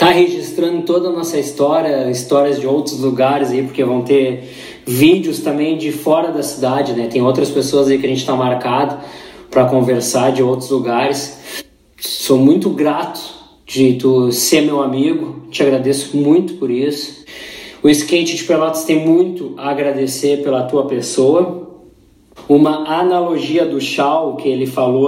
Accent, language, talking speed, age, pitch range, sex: Brazilian, Portuguese, 160 wpm, 20-39, 130-155 Hz, male